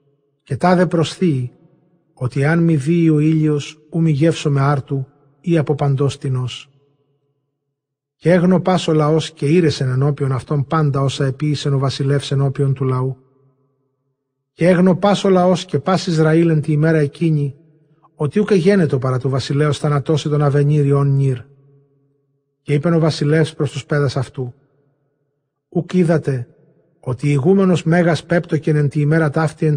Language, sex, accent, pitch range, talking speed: Greek, male, native, 140-160 Hz, 145 wpm